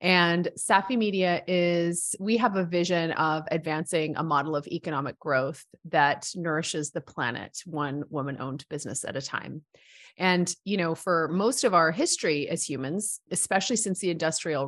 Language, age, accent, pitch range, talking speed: English, 30-49, American, 160-185 Hz, 165 wpm